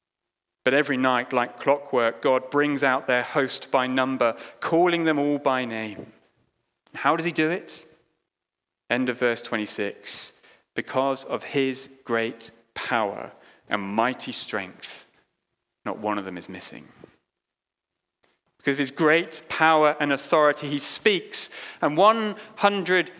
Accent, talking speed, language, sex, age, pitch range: British, 130 wpm, English, male, 30-49, 130-165 Hz